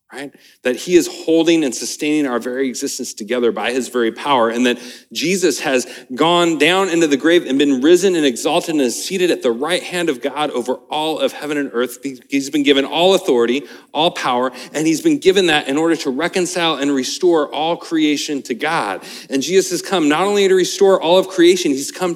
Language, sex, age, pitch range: English, male, 40-59, 125-185 Hz